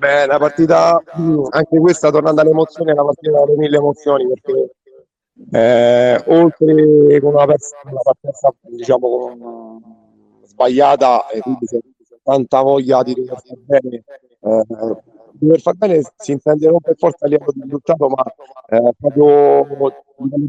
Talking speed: 140 wpm